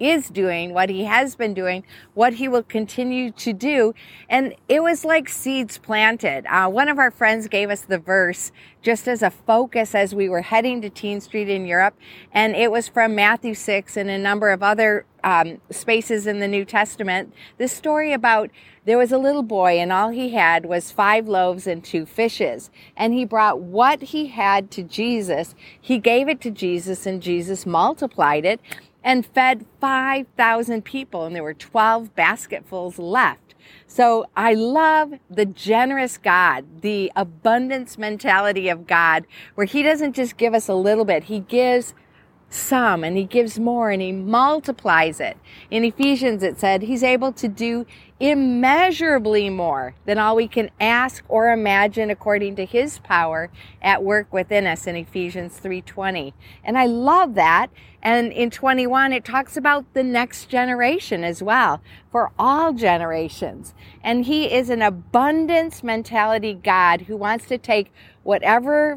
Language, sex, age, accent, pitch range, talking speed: English, female, 40-59, American, 195-250 Hz, 165 wpm